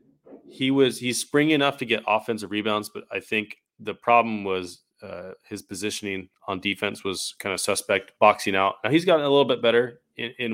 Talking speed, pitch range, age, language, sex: 200 wpm, 100-125 Hz, 20-39, English, male